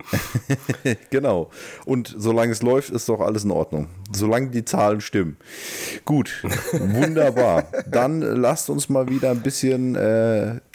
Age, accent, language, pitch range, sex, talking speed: 30-49, German, German, 100-125 Hz, male, 135 wpm